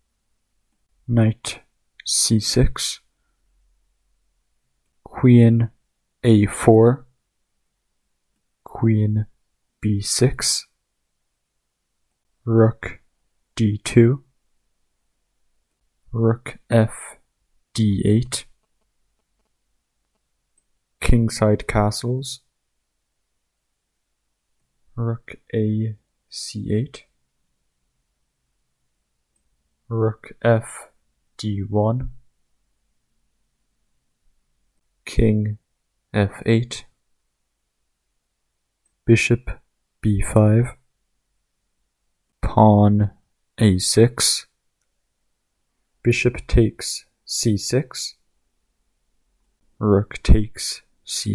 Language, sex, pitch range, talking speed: English, male, 90-115 Hz, 50 wpm